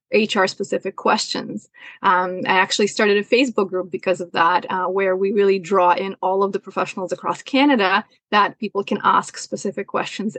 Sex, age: female, 30-49